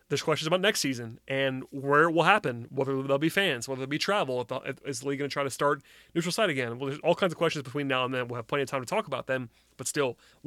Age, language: 30-49, English